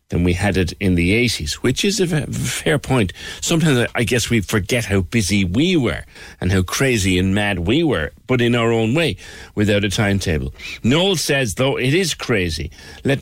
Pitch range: 90-120 Hz